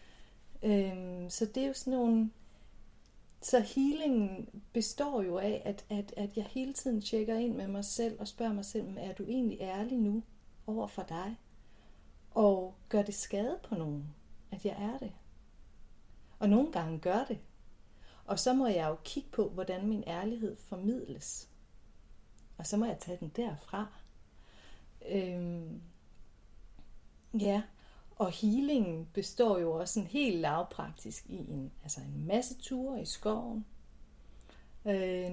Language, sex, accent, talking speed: Danish, female, native, 150 wpm